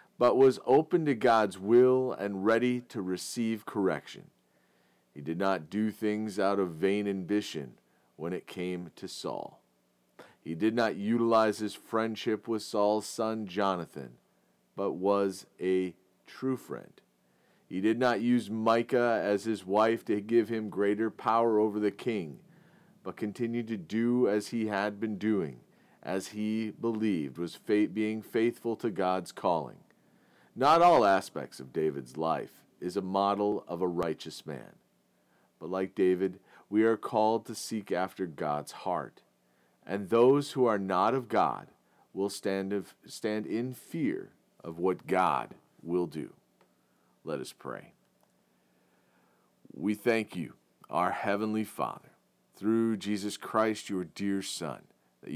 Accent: American